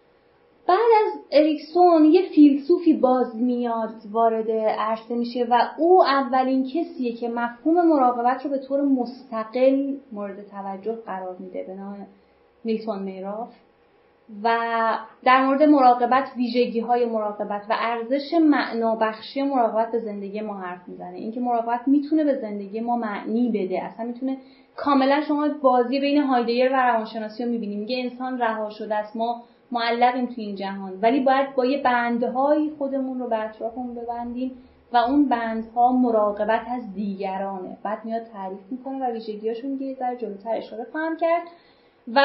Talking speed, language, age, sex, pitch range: 140 wpm, Persian, 30-49, female, 220-270 Hz